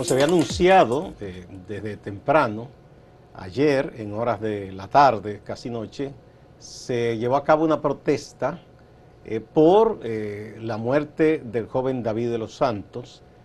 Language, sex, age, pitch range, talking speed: Spanish, male, 50-69, 110-145 Hz, 140 wpm